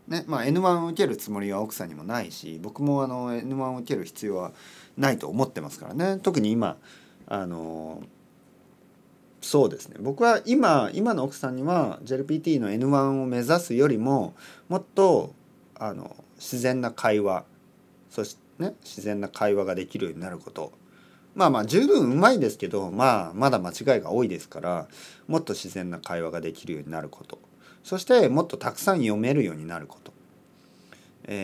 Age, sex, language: 40-59, male, Japanese